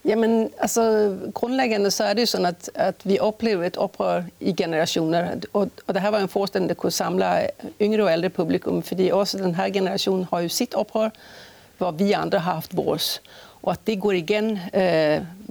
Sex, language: female, Danish